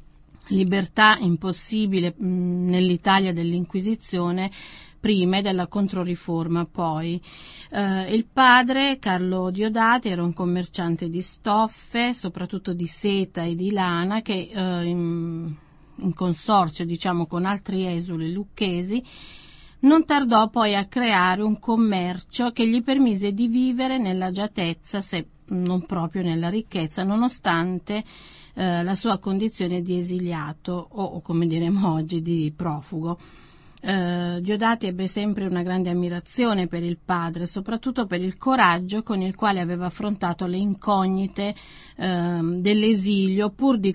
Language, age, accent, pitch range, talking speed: Italian, 40-59, native, 175-210 Hz, 125 wpm